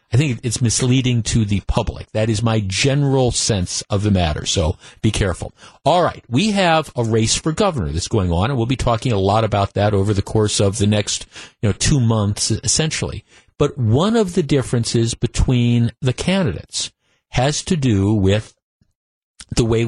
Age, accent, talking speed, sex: 50-69, American, 185 wpm, male